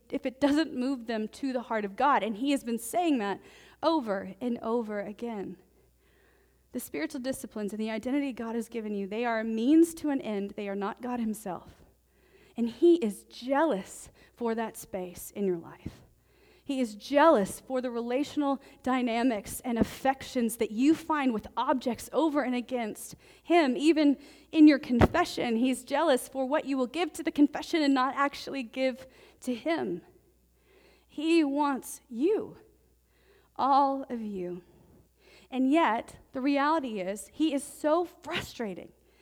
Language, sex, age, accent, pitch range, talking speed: English, female, 30-49, American, 230-310 Hz, 160 wpm